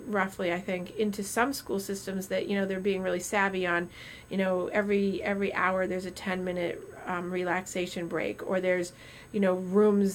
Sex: female